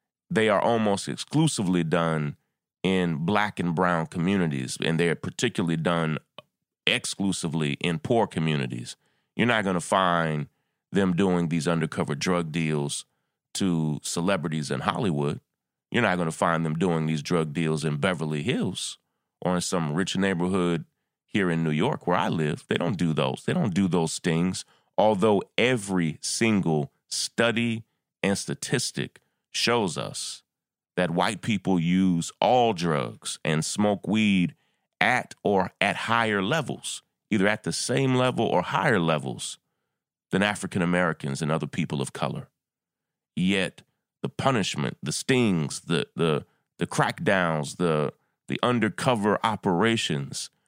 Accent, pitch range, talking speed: American, 80-100 Hz, 140 wpm